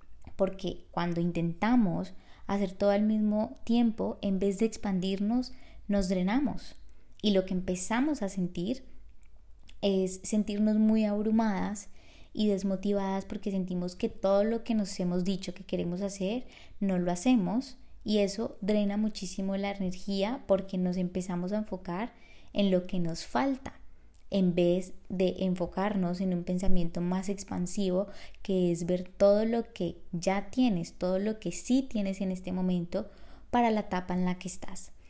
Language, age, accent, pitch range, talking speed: Spanish, 20-39, Colombian, 180-215 Hz, 150 wpm